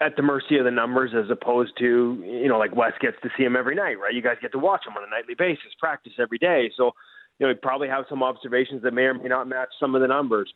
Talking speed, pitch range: 290 wpm, 125-150 Hz